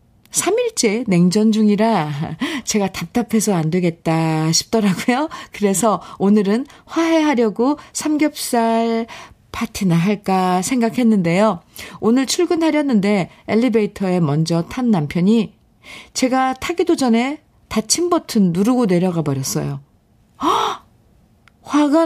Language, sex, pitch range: Korean, female, 180-240 Hz